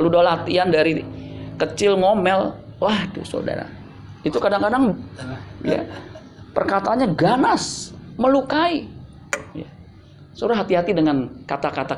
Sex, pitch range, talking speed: male, 170-255 Hz, 95 wpm